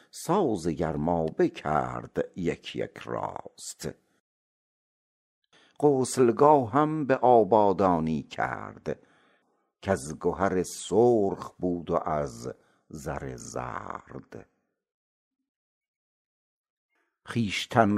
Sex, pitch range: male, 80-110 Hz